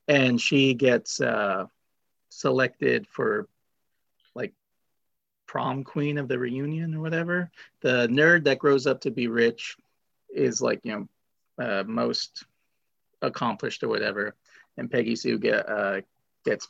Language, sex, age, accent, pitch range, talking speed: English, male, 40-59, American, 120-145 Hz, 125 wpm